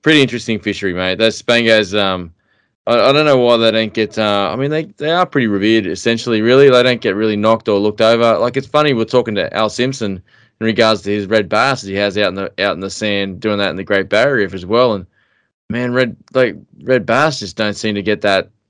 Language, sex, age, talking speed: English, male, 20-39, 245 wpm